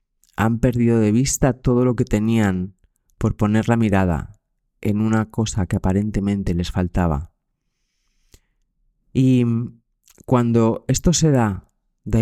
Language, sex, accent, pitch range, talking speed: Spanish, male, Spanish, 100-120 Hz, 125 wpm